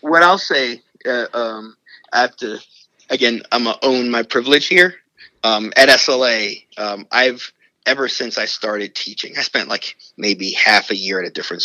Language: English